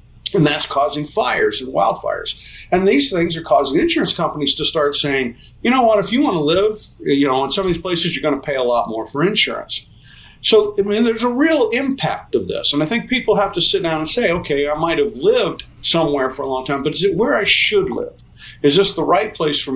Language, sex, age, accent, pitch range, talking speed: English, male, 50-69, American, 130-195 Hz, 250 wpm